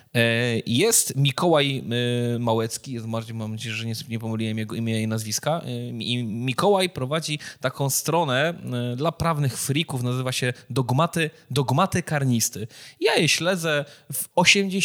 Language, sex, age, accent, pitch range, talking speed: Polish, male, 20-39, native, 115-155 Hz, 120 wpm